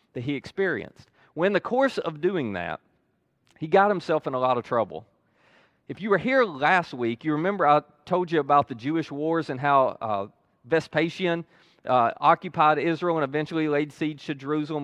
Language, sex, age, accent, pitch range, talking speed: English, male, 30-49, American, 135-170 Hz, 185 wpm